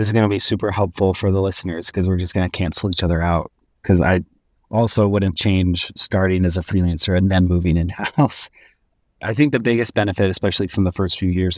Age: 30-49